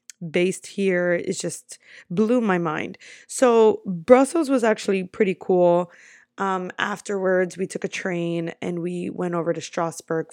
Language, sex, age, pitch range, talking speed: English, female, 20-39, 170-215 Hz, 145 wpm